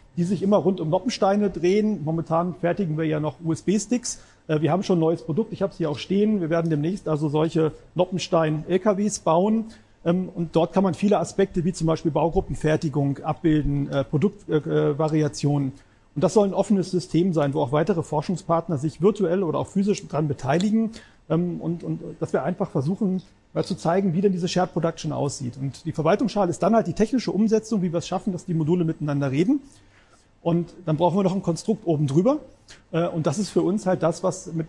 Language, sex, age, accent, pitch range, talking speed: German, male, 40-59, German, 155-190 Hz, 195 wpm